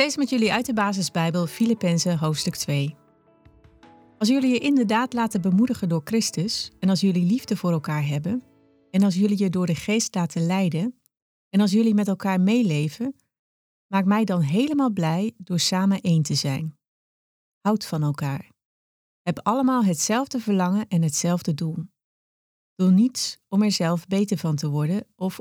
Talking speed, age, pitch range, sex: 165 wpm, 30-49, 155-210 Hz, female